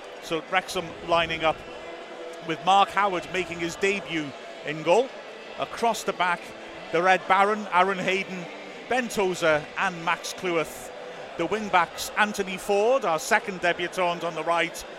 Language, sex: English, male